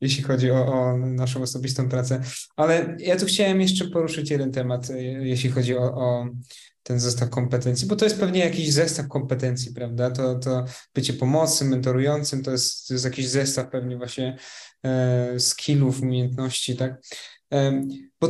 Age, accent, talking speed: 20-39, native, 150 wpm